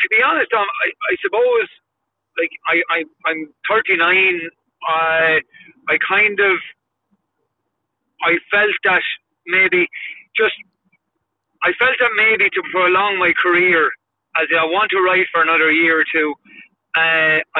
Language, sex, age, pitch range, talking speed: English, male, 30-49, 160-185 Hz, 135 wpm